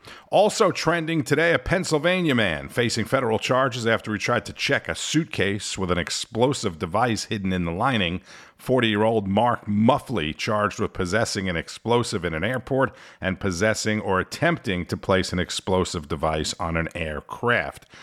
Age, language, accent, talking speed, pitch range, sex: 50-69, English, American, 155 wpm, 95-130 Hz, male